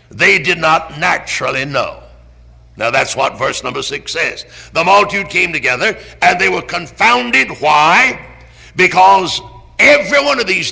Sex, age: male, 60-79